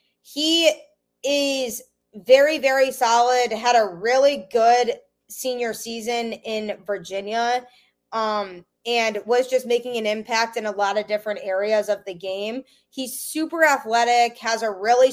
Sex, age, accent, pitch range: female, 20-39, American, 215-250 Hz